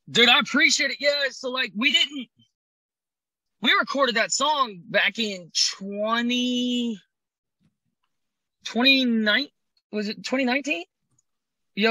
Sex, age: male, 20-39